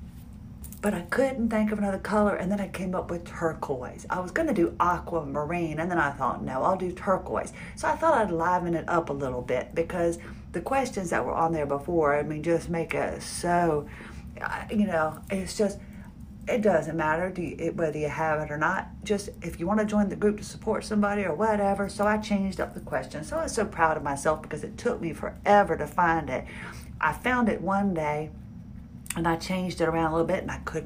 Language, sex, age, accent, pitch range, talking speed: English, female, 40-59, American, 155-195 Hz, 220 wpm